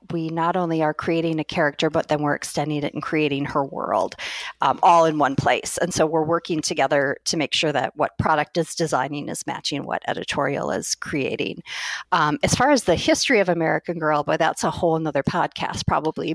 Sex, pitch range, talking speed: female, 150-175 Hz, 205 wpm